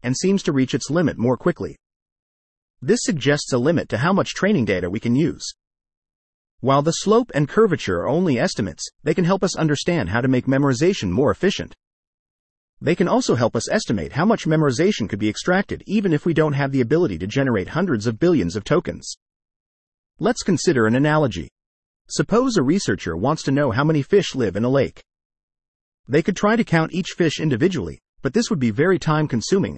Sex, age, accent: male, 40-59, American